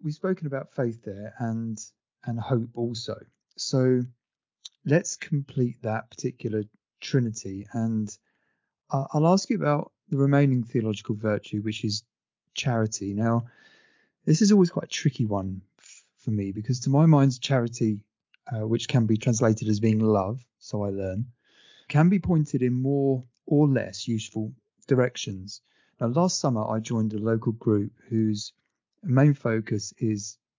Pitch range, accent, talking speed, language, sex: 110-135 Hz, British, 145 wpm, English, male